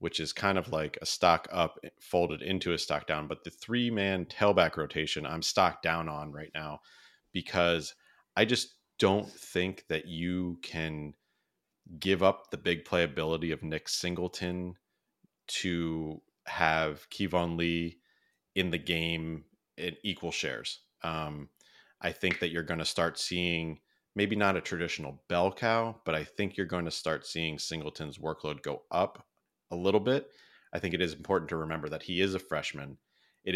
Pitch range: 75-90 Hz